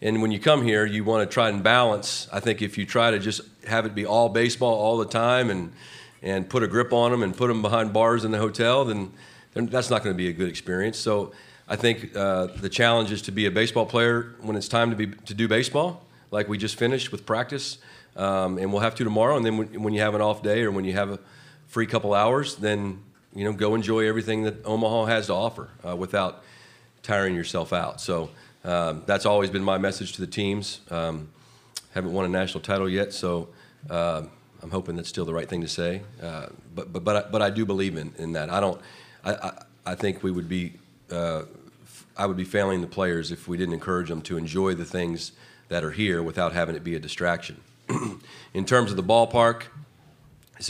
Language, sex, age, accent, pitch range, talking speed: English, male, 40-59, American, 95-115 Hz, 235 wpm